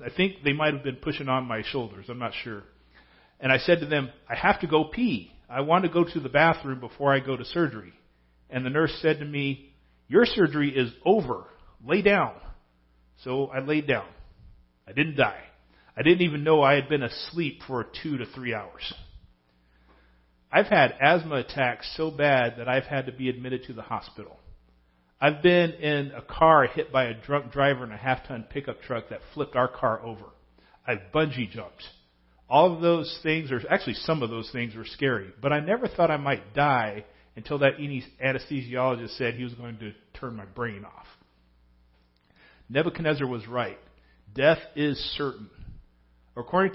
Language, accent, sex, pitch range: English, American, male, 110-150 Hz